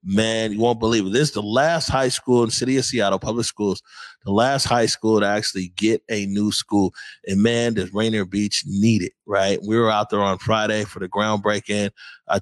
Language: English